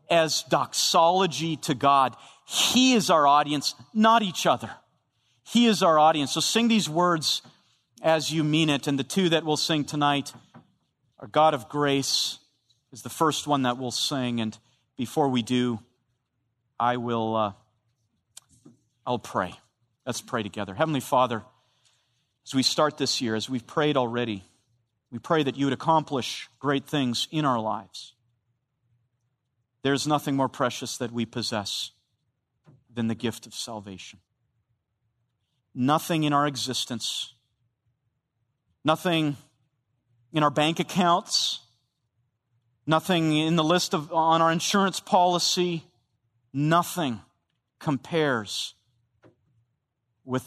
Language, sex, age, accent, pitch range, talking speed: English, male, 40-59, American, 115-150 Hz, 130 wpm